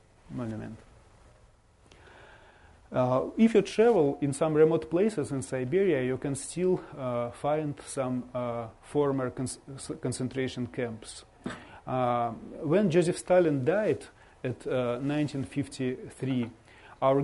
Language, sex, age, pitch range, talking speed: English, male, 30-49, 120-145 Hz, 110 wpm